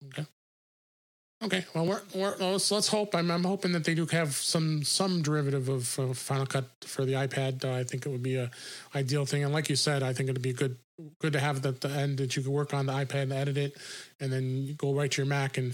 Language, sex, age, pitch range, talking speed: English, male, 30-49, 135-150 Hz, 255 wpm